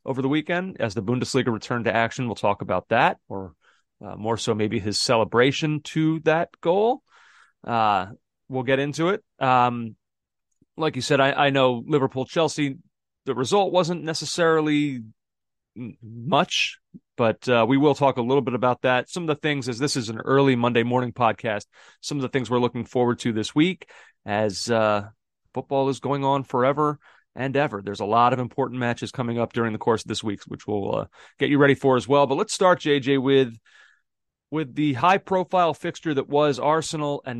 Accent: American